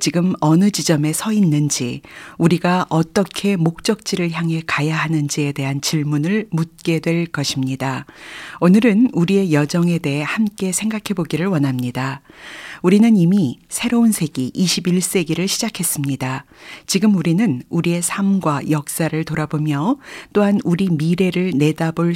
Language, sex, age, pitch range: Korean, female, 40-59, 155-200 Hz